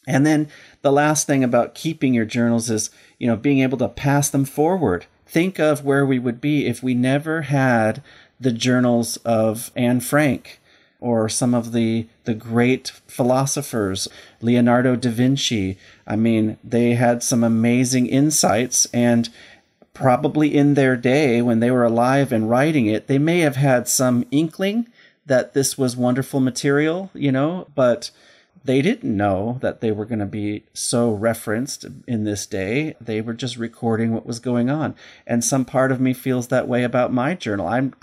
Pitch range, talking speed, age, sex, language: 115-140 Hz, 175 wpm, 40-59, male, English